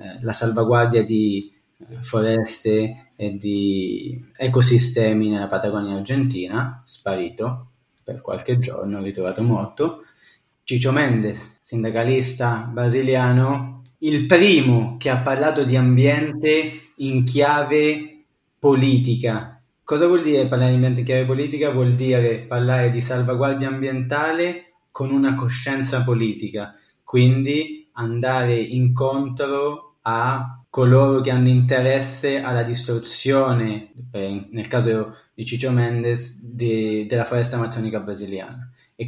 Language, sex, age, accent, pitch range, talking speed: Italian, male, 20-39, native, 115-130 Hz, 110 wpm